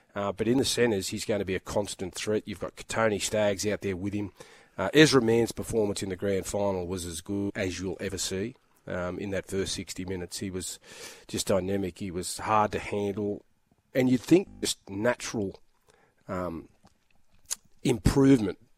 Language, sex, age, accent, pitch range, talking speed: English, male, 30-49, Australian, 95-110 Hz, 180 wpm